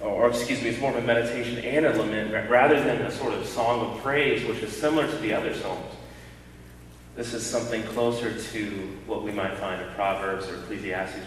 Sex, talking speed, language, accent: male, 210 wpm, English, American